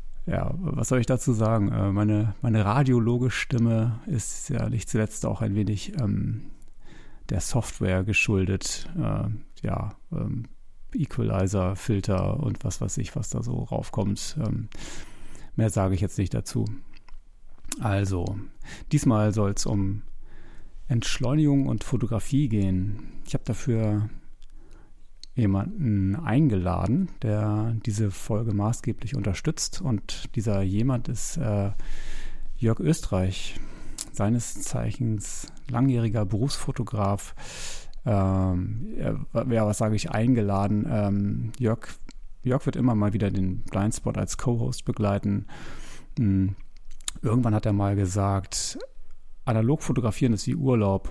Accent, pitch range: German, 100-125 Hz